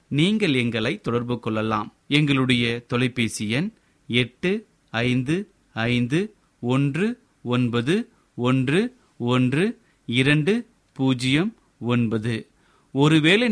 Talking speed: 80 wpm